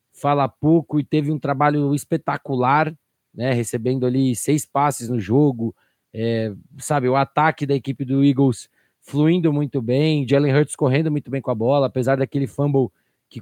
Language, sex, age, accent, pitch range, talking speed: Portuguese, male, 20-39, Brazilian, 130-155 Hz, 165 wpm